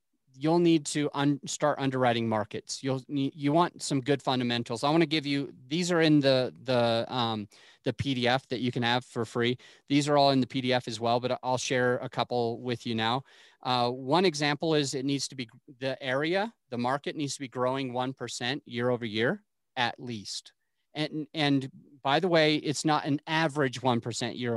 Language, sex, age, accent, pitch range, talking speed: English, male, 30-49, American, 125-155 Hz, 200 wpm